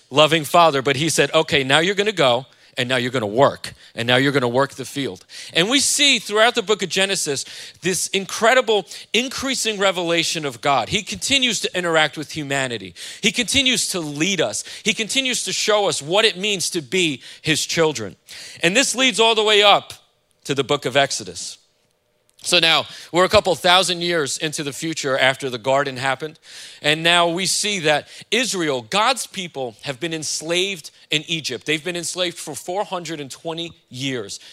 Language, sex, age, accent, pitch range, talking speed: English, male, 40-59, American, 135-185 Hz, 185 wpm